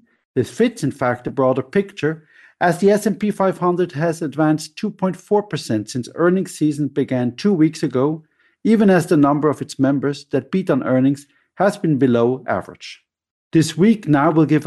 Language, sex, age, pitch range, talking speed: English, male, 50-69, 135-180 Hz, 170 wpm